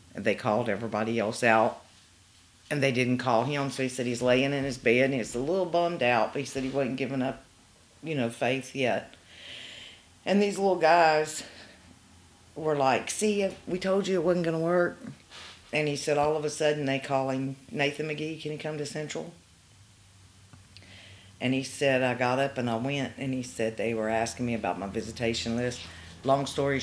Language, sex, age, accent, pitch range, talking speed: English, female, 50-69, American, 105-140 Hz, 195 wpm